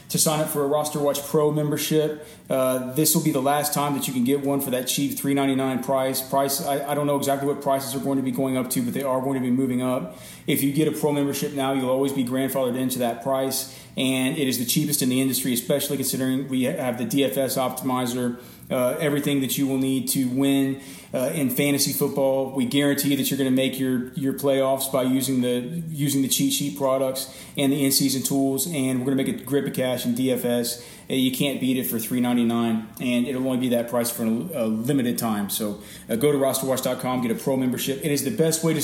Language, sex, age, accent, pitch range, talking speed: English, male, 30-49, American, 130-145 Hz, 235 wpm